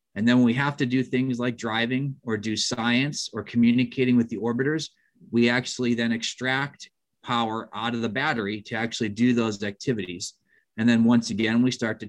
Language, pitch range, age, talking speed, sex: English, 115-130 Hz, 30-49, 195 wpm, male